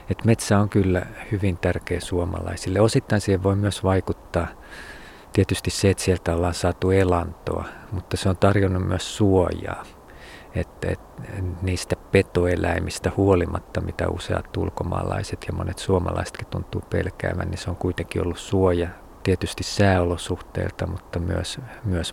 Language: Finnish